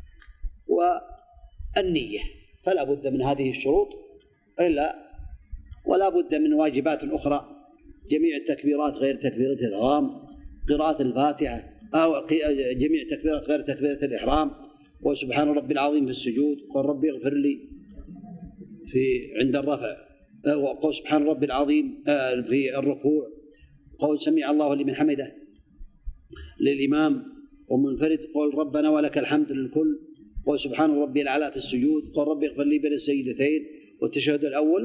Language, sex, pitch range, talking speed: Arabic, male, 140-185 Hz, 120 wpm